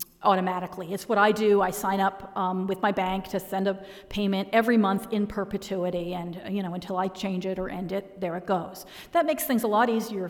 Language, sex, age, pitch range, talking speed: English, female, 40-59, 190-255 Hz, 225 wpm